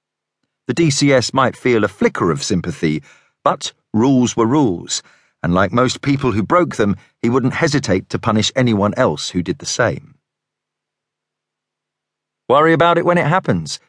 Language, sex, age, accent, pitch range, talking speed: English, male, 40-59, British, 95-150 Hz, 155 wpm